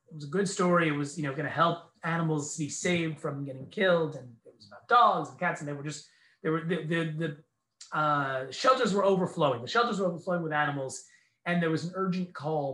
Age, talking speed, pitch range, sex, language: 30-49, 235 wpm, 135-170 Hz, male, English